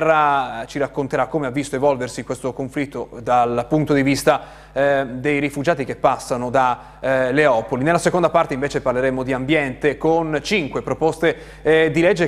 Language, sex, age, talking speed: Italian, male, 30-49, 160 wpm